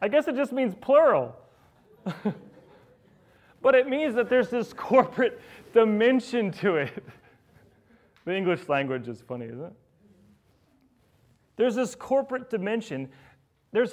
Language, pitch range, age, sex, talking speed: English, 150-230 Hz, 30-49, male, 120 wpm